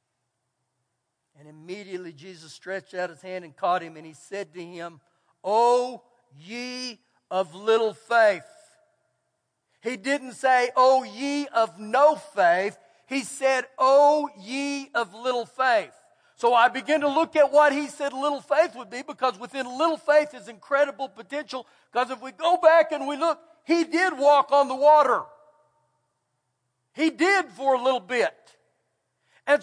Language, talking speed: English, 150 wpm